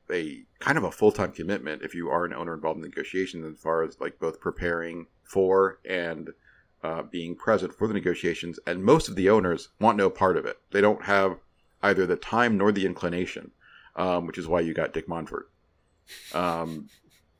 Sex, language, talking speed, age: male, English, 195 wpm, 40-59